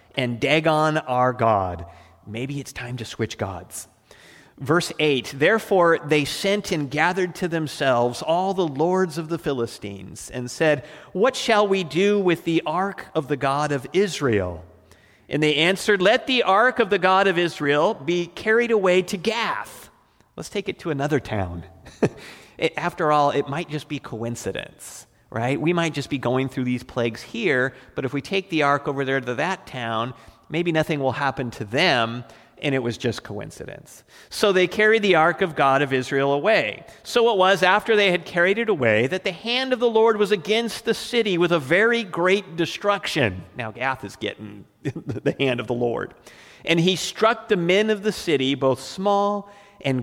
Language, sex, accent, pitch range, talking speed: English, male, American, 125-190 Hz, 185 wpm